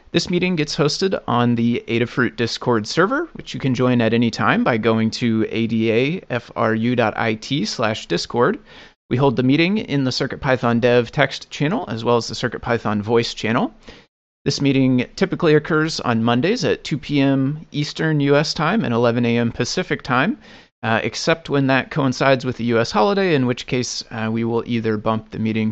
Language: English